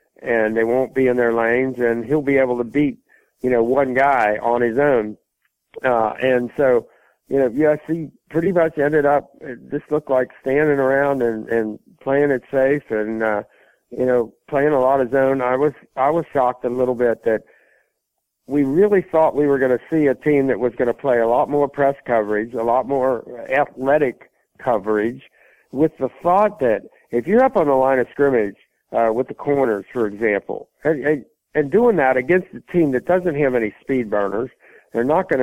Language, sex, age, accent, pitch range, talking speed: English, male, 60-79, American, 120-150 Hz, 200 wpm